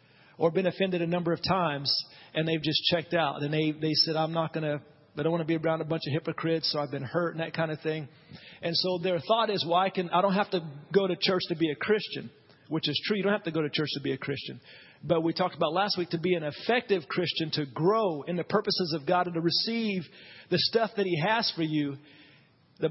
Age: 40-59